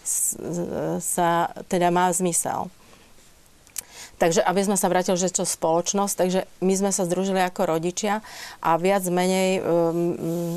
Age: 40-59